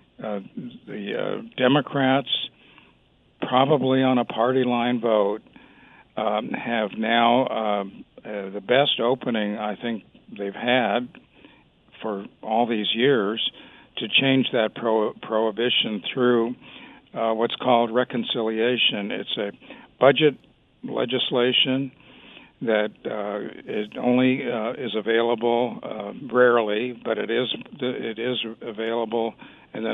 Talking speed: 115 wpm